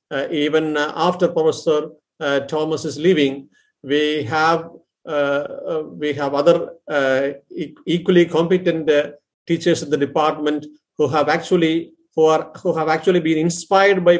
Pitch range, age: 145-165 Hz, 50-69